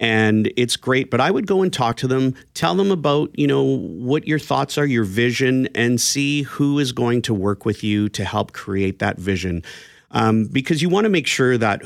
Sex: male